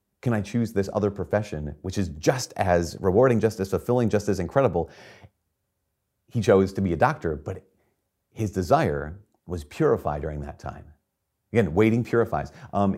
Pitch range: 90-115 Hz